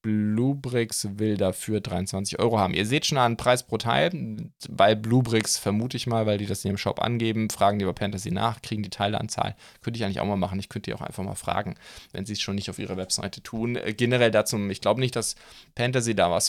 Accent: German